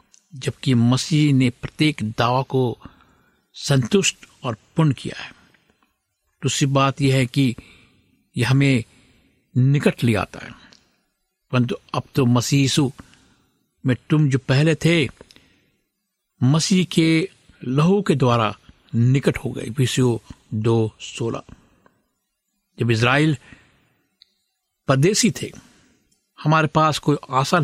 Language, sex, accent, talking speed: Hindi, male, native, 105 wpm